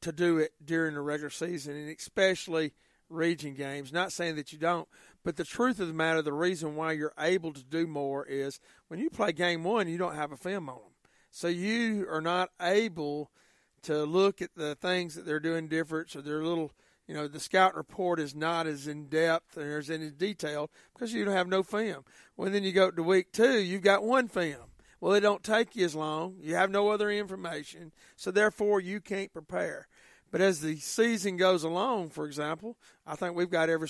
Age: 40-59